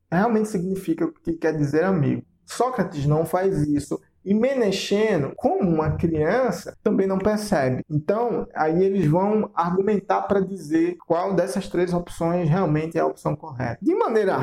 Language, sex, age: Portuguese, male, 20-39